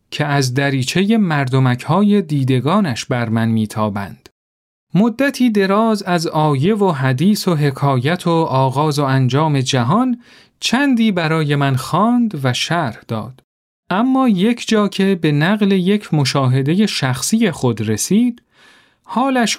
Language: Persian